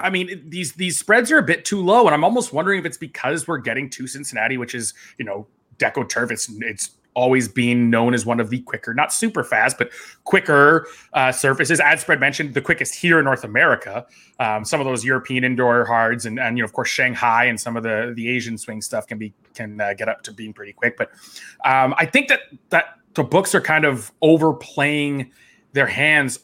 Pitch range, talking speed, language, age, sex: 130-200 Hz, 225 wpm, English, 20-39, male